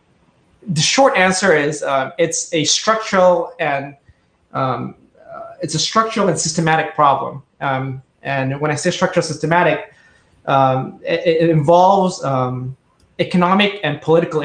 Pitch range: 140-170 Hz